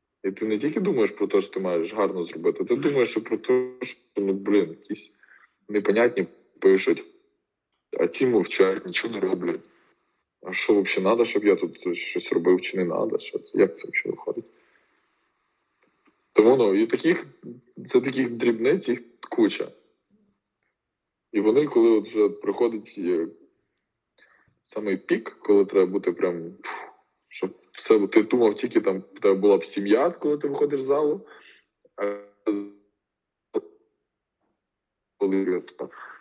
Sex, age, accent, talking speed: male, 20-39, native, 135 wpm